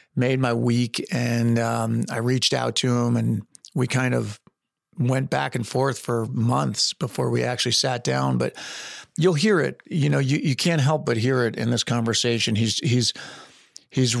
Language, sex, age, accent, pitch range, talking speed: English, male, 40-59, American, 115-135 Hz, 175 wpm